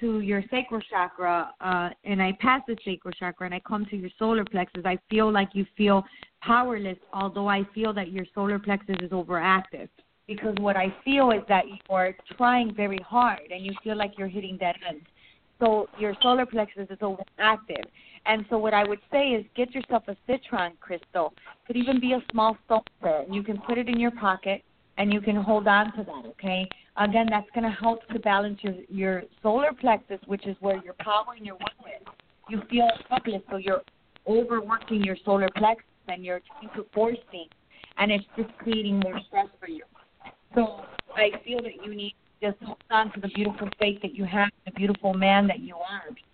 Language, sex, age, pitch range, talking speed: English, female, 30-49, 195-225 Hz, 200 wpm